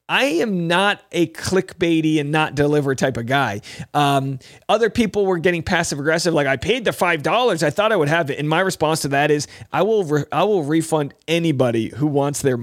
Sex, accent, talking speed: male, American, 215 wpm